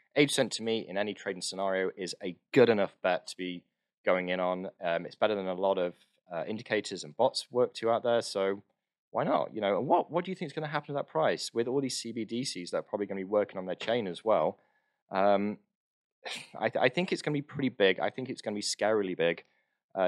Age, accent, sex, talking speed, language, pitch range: 20-39, British, male, 255 wpm, English, 95-125 Hz